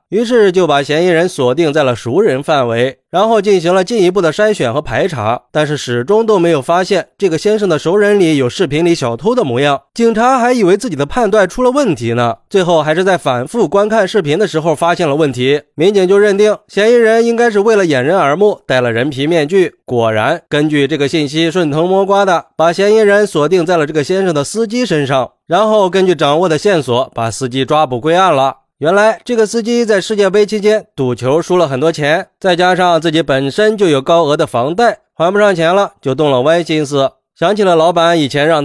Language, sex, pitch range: Chinese, male, 150-200 Hz